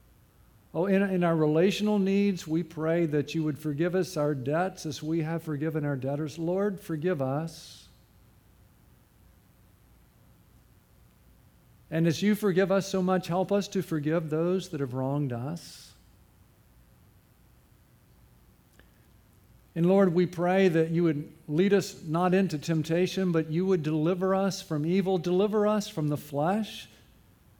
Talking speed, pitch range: 140 wpm, 145-190 Hz